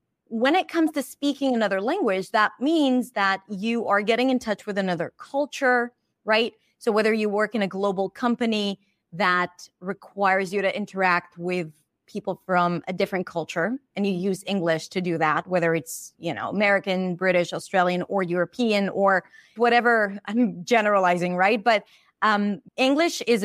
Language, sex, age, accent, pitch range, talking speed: English, female, 30-49, American, 180-230 Hz, 160 wpm